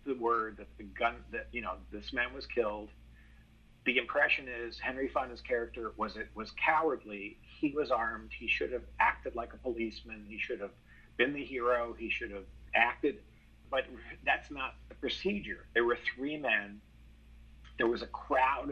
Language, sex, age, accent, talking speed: English, male, 50-69, American, 175 wpm